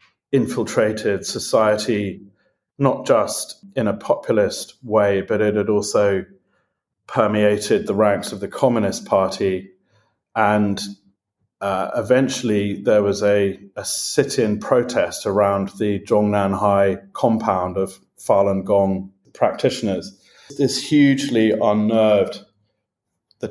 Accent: British